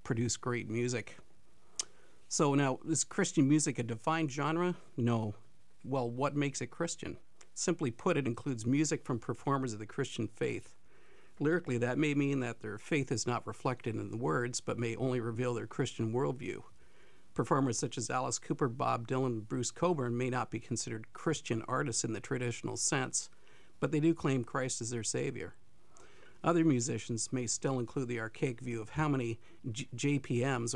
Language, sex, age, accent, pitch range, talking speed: English, male, 50-69, American, 115-140 Hz, 170 wpm